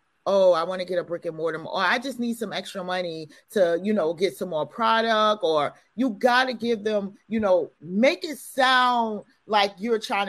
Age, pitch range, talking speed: 30-49, 185-230 Hz, 215 wpm